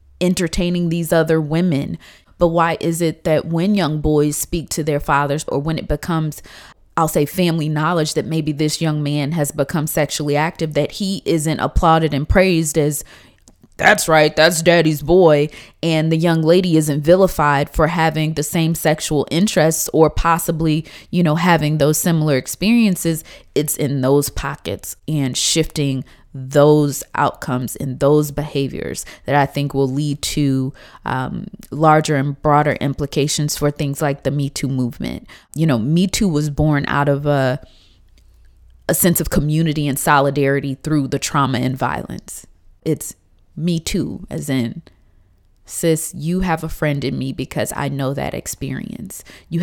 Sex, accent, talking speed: female, American, 160 wpm